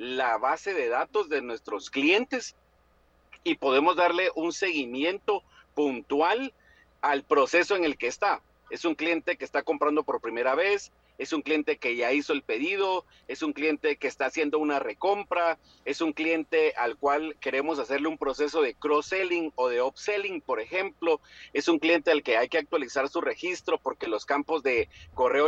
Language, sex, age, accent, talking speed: Spanish, male, 40-59, Mexican, 175 wpm